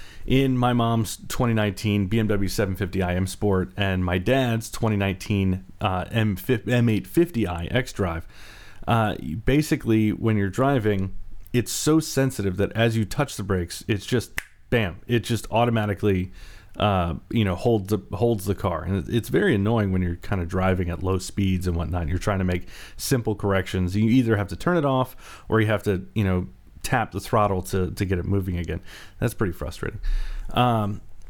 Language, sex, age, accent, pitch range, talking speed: English, male, 30-49, American, 95-115 Hz, 165 wpm